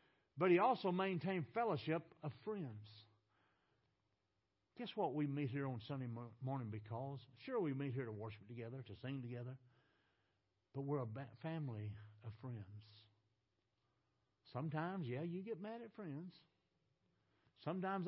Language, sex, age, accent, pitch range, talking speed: English, male, 60-79, American, 110-180 Hz, 135 wpm